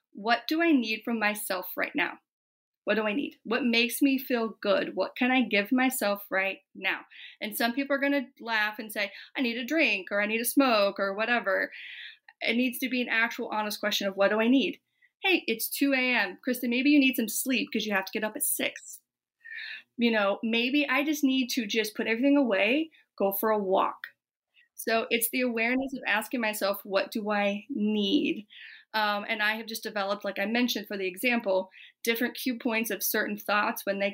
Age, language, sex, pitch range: 30-49, English, female, 205-265 Hz